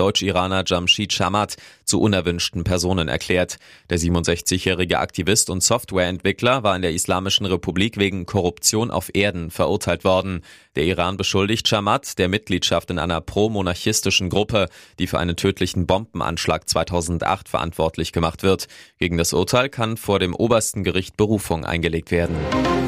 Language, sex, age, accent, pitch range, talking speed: German, male, 20-39, German, 90-105 Hz, 140 wpm